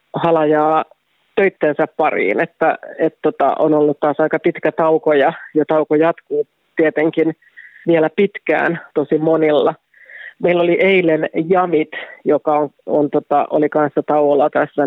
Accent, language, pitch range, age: native, Finnish, 150-165 Hz, 30-49